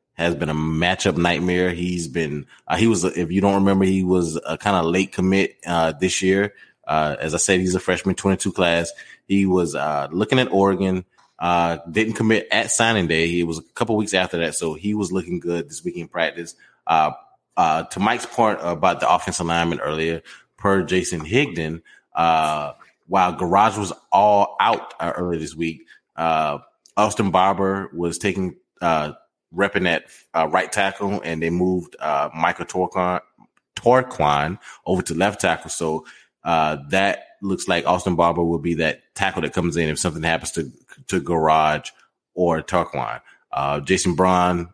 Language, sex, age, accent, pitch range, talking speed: English, male, 20-39, American, 80-95 Hz, 175 wpm